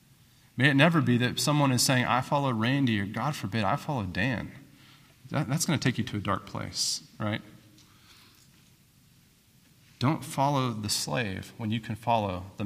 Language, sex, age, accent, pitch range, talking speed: English, male, 30-49, American, 115-160 Hz, 170 wpm